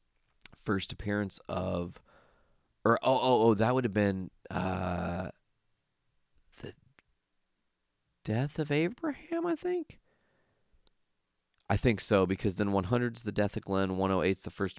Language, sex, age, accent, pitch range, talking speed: English, male, 30-49, American, 95-125 Hz, 135 wpm